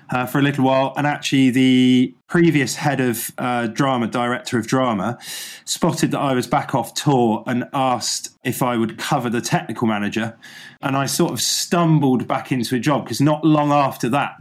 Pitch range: 120-140 Hz